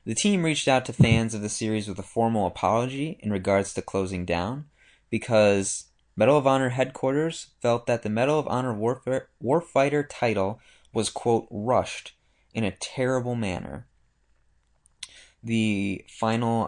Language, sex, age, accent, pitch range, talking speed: English, male, 20-39, American, 100-125 Hz, 145 wpm